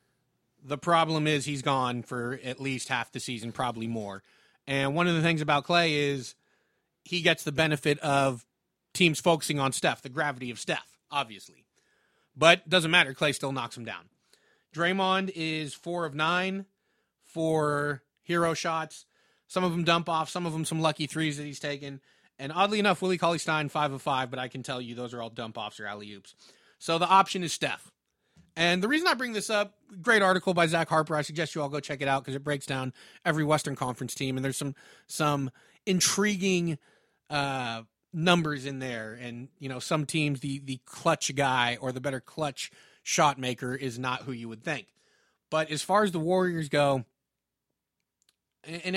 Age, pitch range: 30-49, 130-165 Hz